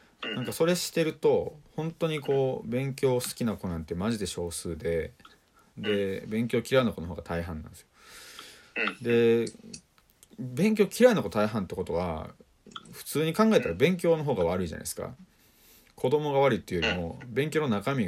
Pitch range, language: 90-140 Hz, Japanese